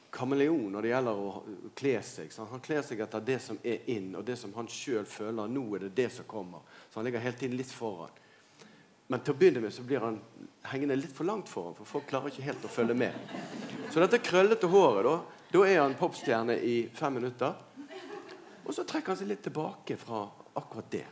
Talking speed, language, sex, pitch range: 220 wpm, English, male, 115-150 Hz